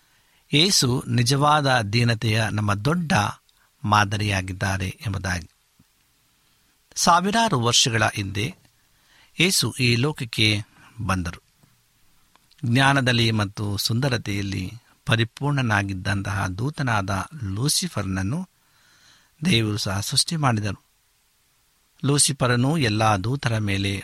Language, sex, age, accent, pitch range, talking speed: Kannada, male, 60-79, native, 105-145 Hz, 70 wpm